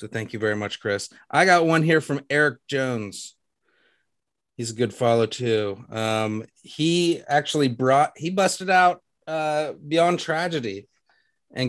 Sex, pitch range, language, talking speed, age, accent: male, 120-155 Hz, English, 150 wpm, 30-49, American